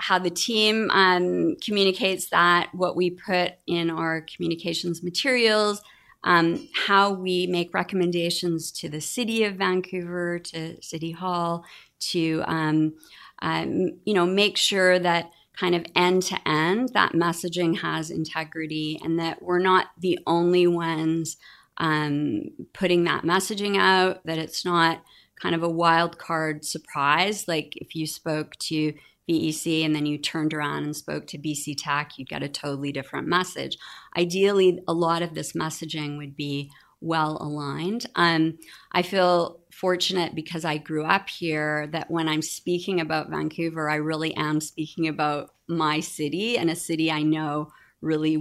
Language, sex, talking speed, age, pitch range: English, female, 150 wpm, 30-49, 155-180 Hz